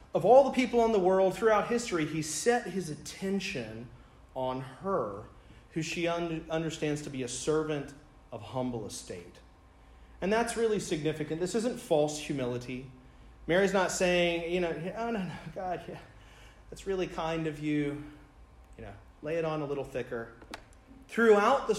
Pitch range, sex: 135-190 Hz, male